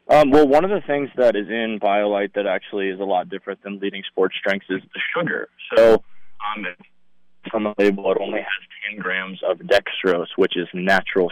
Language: English